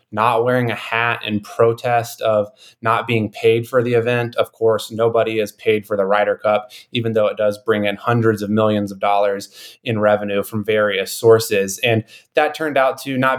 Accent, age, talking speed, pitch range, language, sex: American, 20-39, 195 wpm, 110-130 Hz, English, male